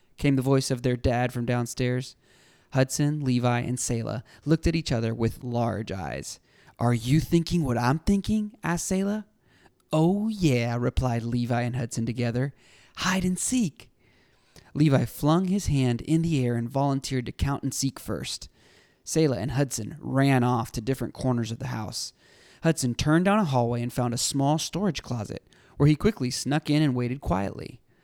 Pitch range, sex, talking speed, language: 120-150 Hz, male, 175 wpm, English